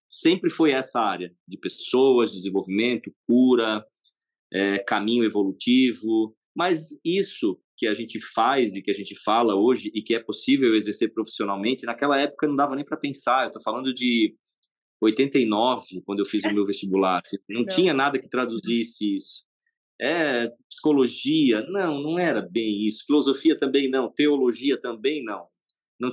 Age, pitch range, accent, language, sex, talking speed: 20-39, 105-145 Hz, Brazilian, Portuguese, male, 155 wpm